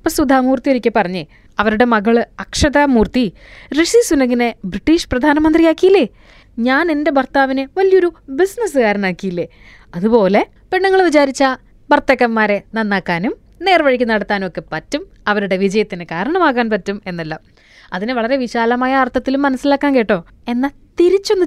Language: Malayalam